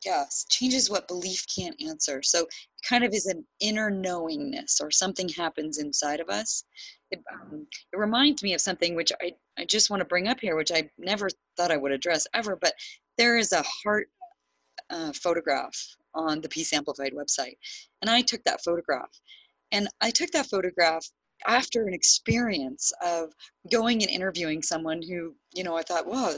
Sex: female